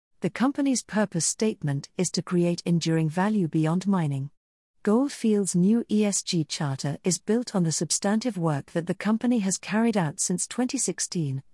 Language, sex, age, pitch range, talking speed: English, female, 50-69, 160-220 Hz, 150 wpm